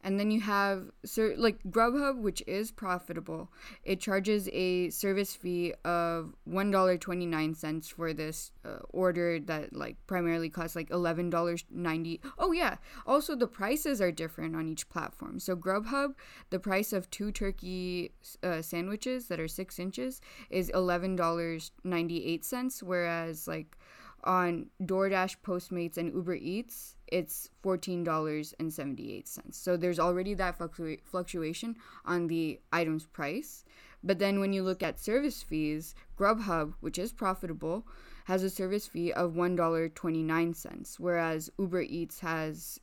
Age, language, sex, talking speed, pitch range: 10-29, English, female, 130 wpm, 165-200 Hz